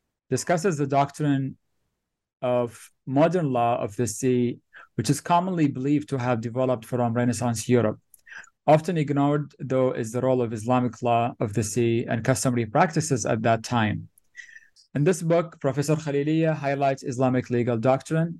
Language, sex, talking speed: English, male, 150 wpm